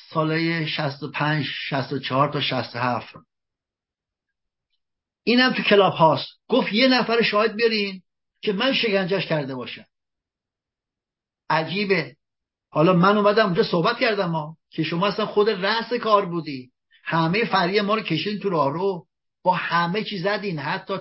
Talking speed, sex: 130 wpm, male